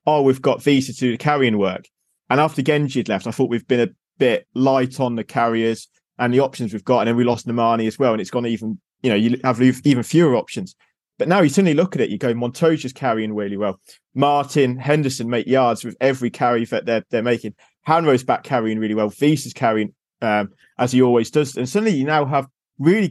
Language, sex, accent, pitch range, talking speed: English, male, British, 125-155 Hz, 230 wpm